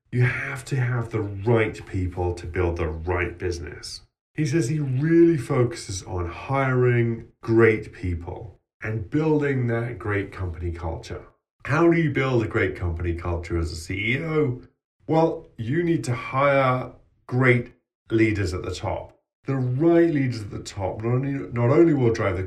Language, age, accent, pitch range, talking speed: English, 40-59, British, 90-125 Hz, 160 wpm